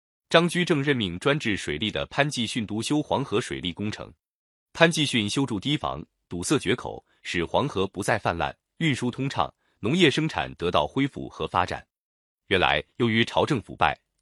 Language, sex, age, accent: Chinese, male, 30-49, native